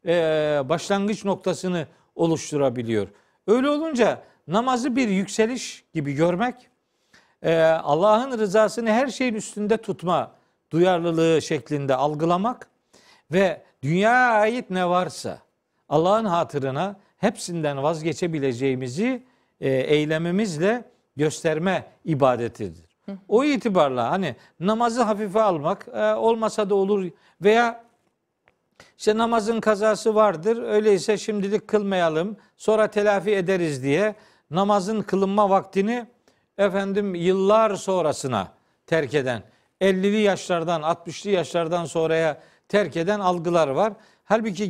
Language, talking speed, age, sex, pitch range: Turkish, 95 wpm, 50-69, male, 160-210 Hz